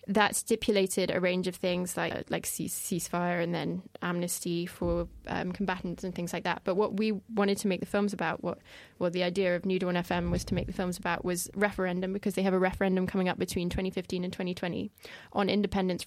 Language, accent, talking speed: English, British, 215 wpm